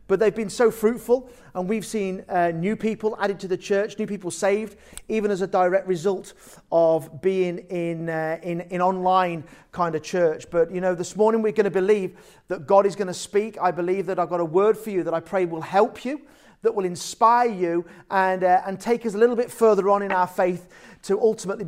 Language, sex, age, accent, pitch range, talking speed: English, male, 40-59, British, 180-235 Hz, 230 wpm